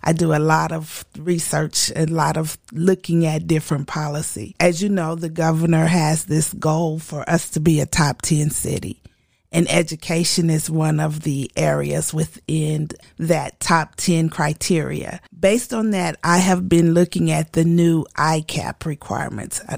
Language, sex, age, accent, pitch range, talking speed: English, female, 30-49, American, 155-175 Hz, 165 wpm